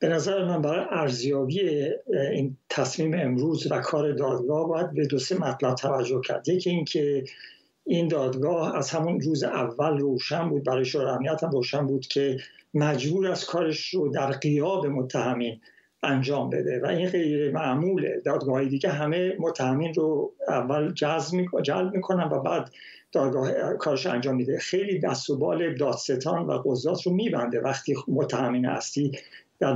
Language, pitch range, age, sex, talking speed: Persian, 135-185 Hz, 60-79, male, 150 wpm